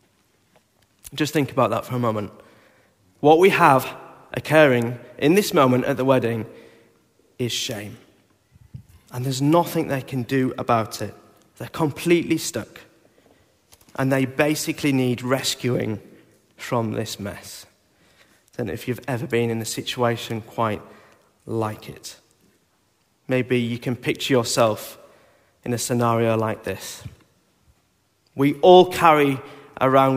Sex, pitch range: male, 115-135 Hz